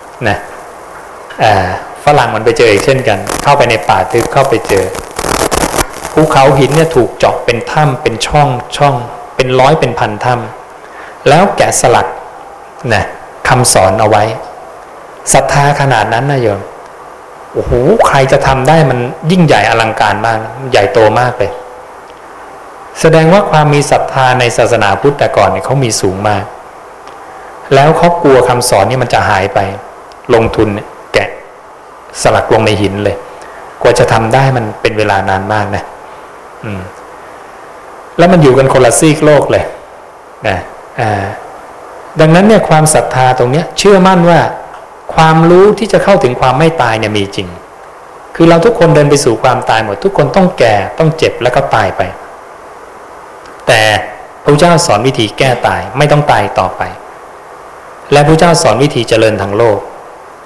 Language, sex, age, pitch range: English, male, 20-39, 120-160 Hz